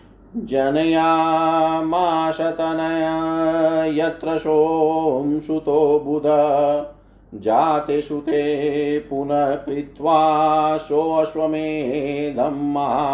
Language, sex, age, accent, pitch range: Hindi, male, 50-69, native, 145-155 Hz